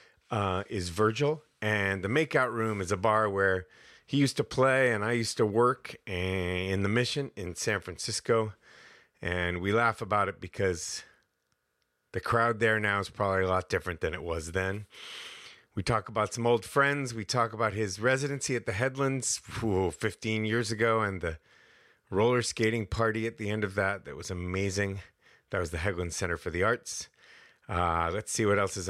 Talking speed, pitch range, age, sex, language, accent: 185 wpm, 95-120 Hz, 30-49, male, English, American